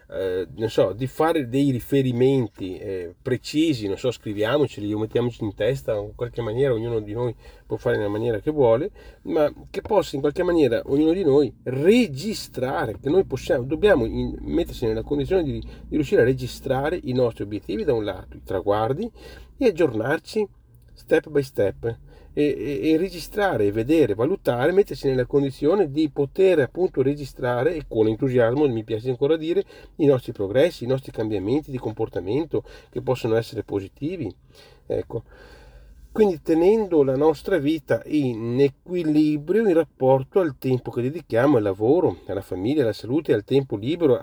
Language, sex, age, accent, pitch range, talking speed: Italian, male, 40-59, native, 110-150 Hz, 155 wpm